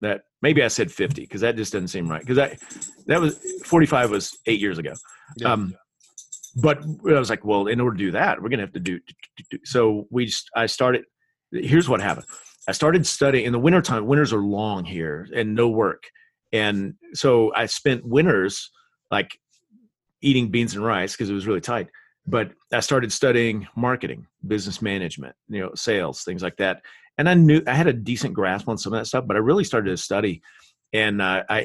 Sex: male